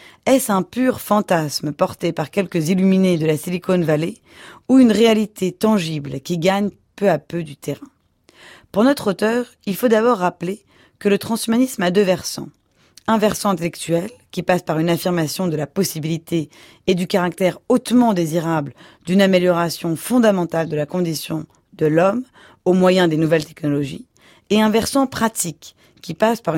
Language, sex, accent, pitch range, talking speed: French, female, French, 165-215 Hz, 165 wpm